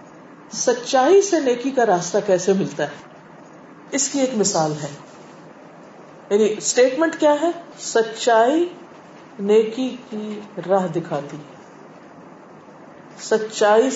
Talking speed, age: 100 wpm, 50-69